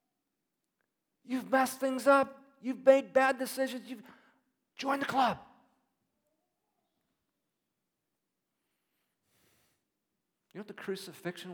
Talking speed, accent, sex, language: 90 wpm, American, male, English